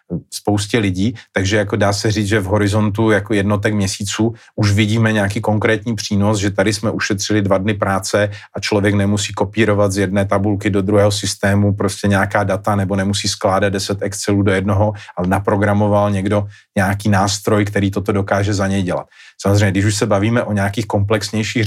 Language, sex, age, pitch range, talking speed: Slovak, male, 40-59, 100-105 Hz, 170 wpm